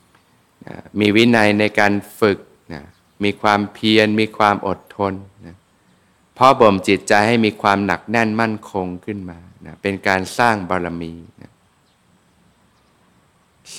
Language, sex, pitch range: Thai, male, 90-110 Hz